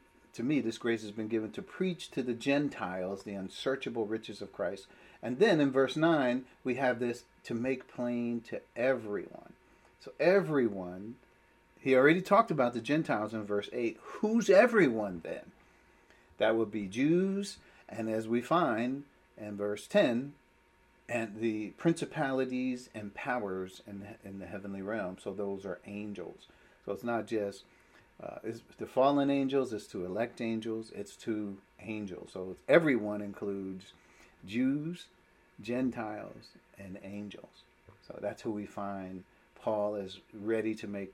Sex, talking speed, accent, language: male, 150 wpm, American, English